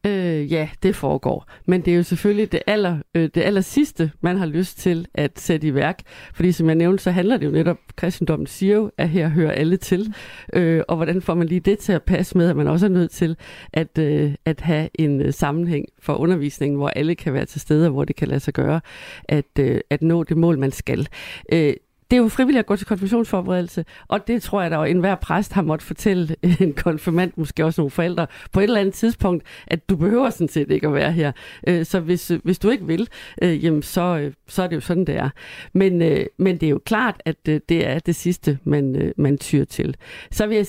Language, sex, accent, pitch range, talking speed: Danish, female, native, 155-185 Hz, 225 wpm